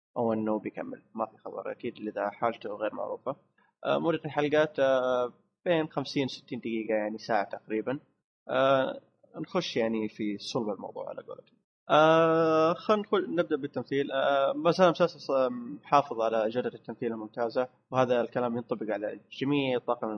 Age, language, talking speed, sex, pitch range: 20-39, Arabic, 130 wpm, male, 115-145 Hz